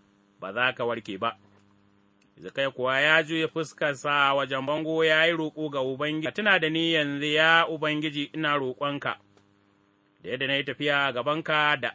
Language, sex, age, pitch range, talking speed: English, male, 30-49, 100-165 Hz, 130 wpm